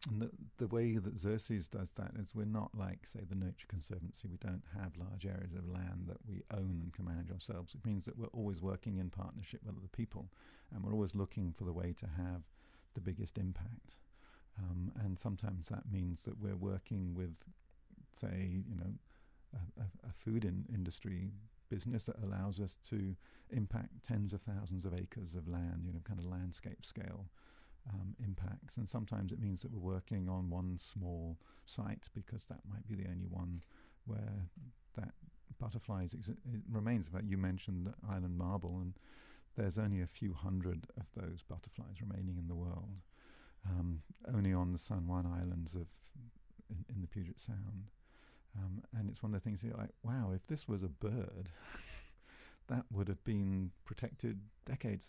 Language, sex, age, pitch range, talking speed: English, male, 50-69, 90-110 Hz, 185 wpm